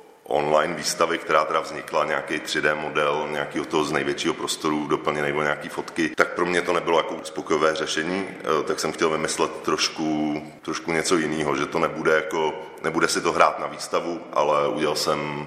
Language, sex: Czech, male